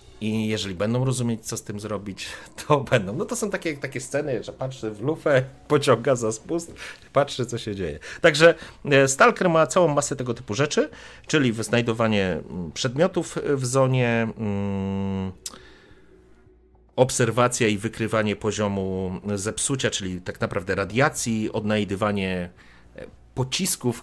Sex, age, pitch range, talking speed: male, 40-59, 105-130 Hz, 125 wpm